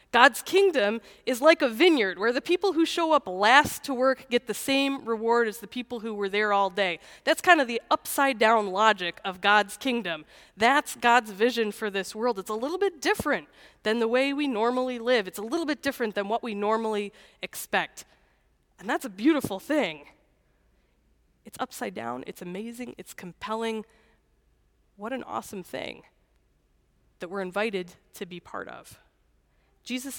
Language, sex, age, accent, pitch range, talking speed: English, female, 20-39, American, 205-275 Hz, 170 wpm